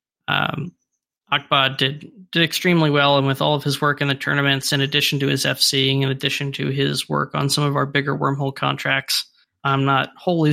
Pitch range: 140-170 Hz